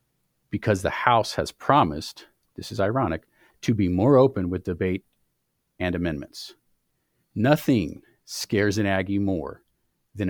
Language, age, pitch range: English, 40-59, 90-115 Hz